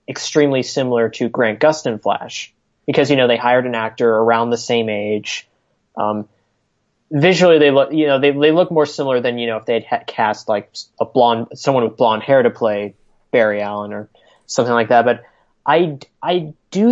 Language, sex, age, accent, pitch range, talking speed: English, male, 20-39, American, 115-140 Hz, 190 wpm